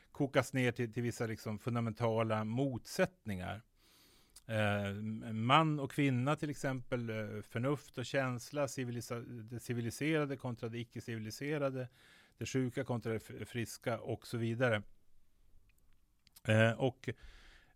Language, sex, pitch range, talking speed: Swedish, male, 110-140 Hz, 105 wpm